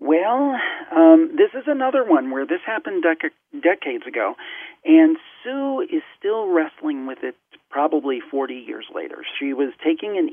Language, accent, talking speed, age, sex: English, American, 150 wpm, 50-69, male